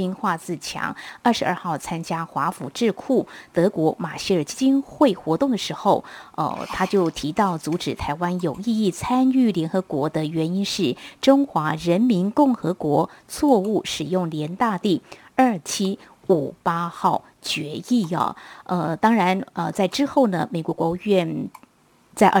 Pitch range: 165-230 Hz